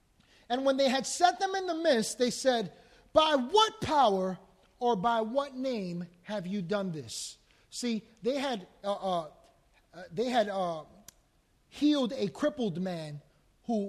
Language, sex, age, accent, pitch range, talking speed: English, male, 30-49, American, 215-290 Hz, 150 wpm